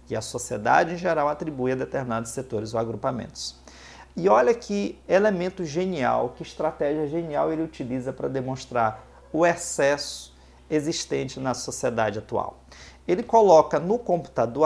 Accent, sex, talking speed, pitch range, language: Brazilian, male, 135 wpm, 100-155 Hz, Portuguese